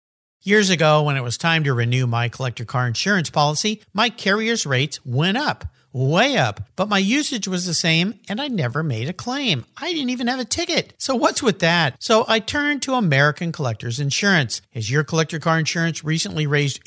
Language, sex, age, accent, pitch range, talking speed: English, male, 50-69, American, 135-210 Hz, 200 wpm